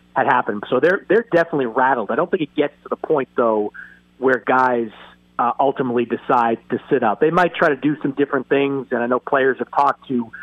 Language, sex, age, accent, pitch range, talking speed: English, male, 30-49, American, 120-140 Hz, 225 wpm